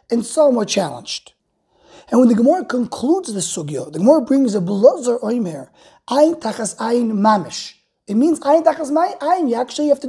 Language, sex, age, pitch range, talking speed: English, male, 20-39, 205-285 Hz, 180 wpm